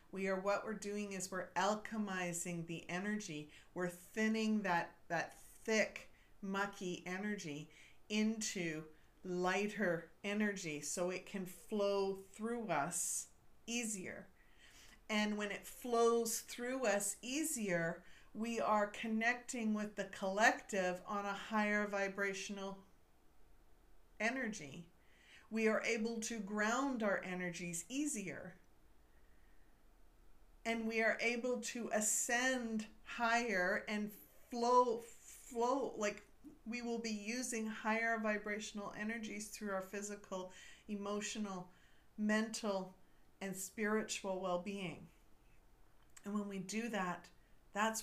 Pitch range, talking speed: 180-220 Hz, 105 wpm